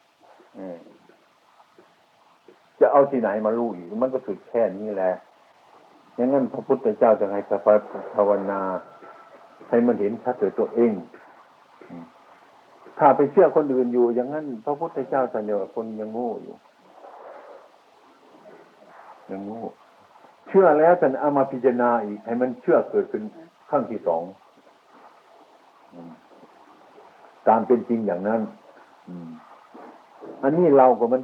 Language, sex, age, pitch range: Thai, male, 60-79, 105-145 Hz